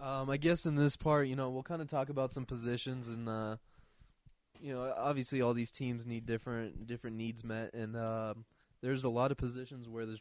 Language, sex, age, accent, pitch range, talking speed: English, male, 20-39, American, 115-130 Hz, 220 wpm